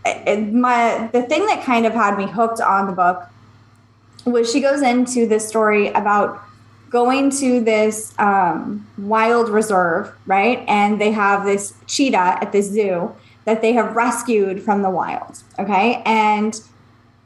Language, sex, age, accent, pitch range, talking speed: English, female, 20-39, American, 200-245 Hz, 155 wpm